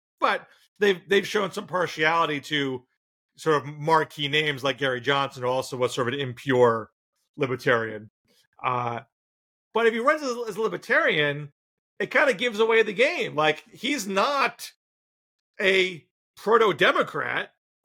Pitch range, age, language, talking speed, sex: 145-215 Hz, 40-59, English, 140 wpm, male